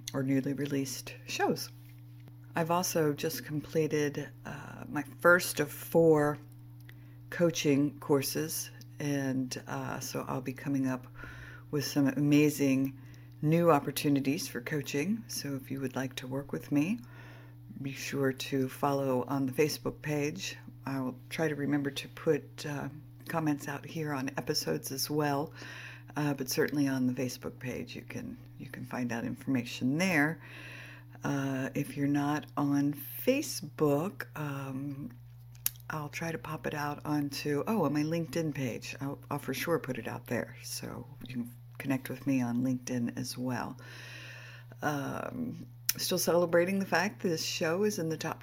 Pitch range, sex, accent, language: 125-150 Hz, female, American, English